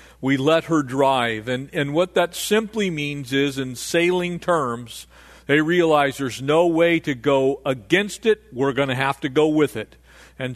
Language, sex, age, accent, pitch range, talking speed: English, male, 40-59, American, 130-170 Hz, 180 wpm